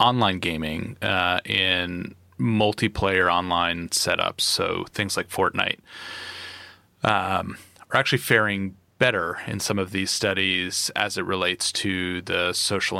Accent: American